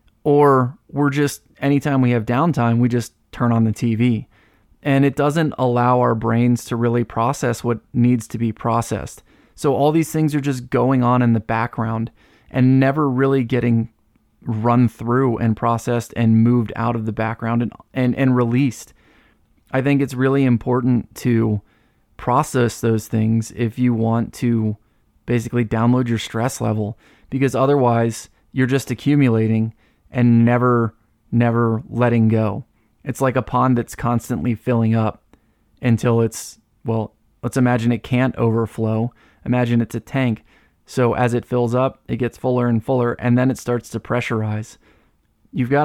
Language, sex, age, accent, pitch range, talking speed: English, male, 20-39, American, 115-125 Hz, 160 wpm